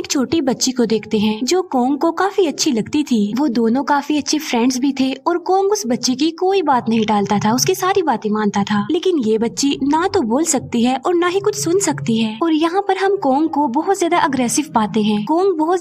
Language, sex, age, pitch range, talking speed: Hindi, female, 20-39, 235-345 Hz, 240 wpm